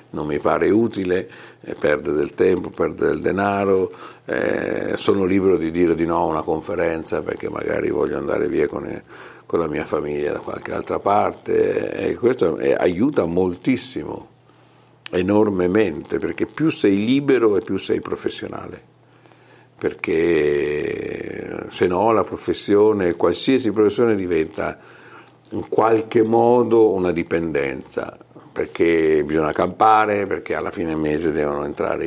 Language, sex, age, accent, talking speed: Italian, male, 50-69, native, 135 wpm